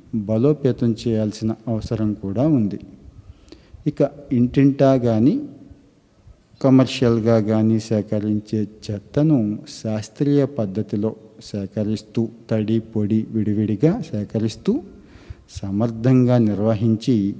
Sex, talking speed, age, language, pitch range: male, 70 wpm, 50-69, Telugu, 105-120 Hz